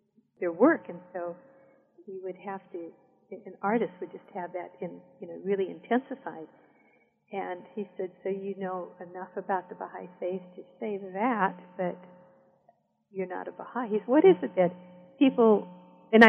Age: 50-69